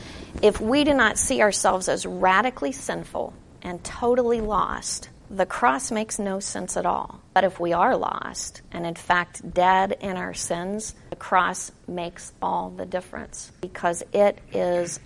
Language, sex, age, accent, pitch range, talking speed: English, female, 50-69, American, 175-205 Hz, 160 wpm